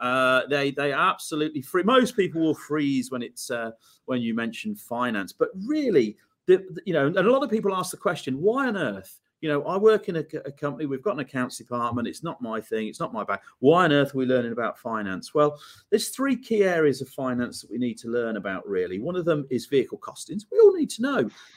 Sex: male